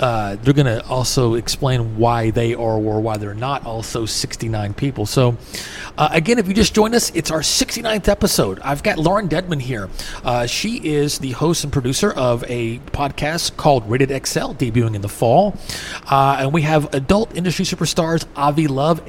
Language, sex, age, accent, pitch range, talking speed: English, male, 30-49, American, 125-160 Hz, 180 wpm